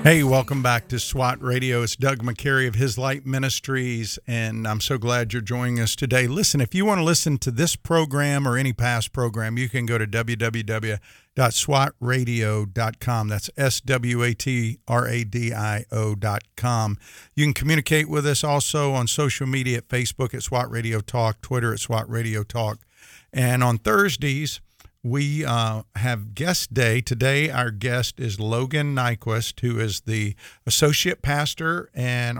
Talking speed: 150 wpm